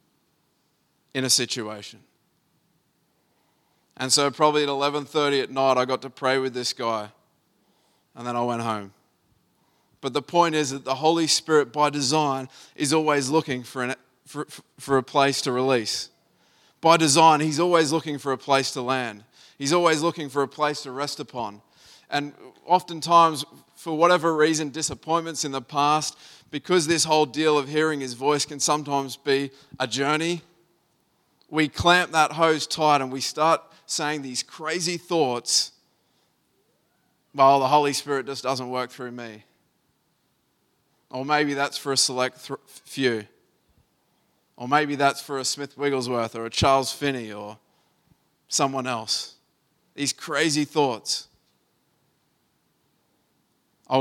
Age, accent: 20-39, Australian